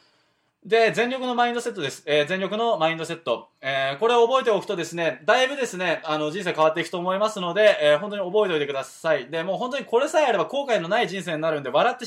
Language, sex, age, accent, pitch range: Japanese, male, 20-39, native, 165-240 Hz